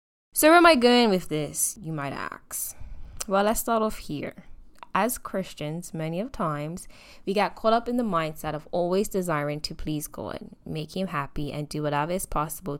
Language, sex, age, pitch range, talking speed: English, female, 10-29, 160-220 Hz, 190 wpm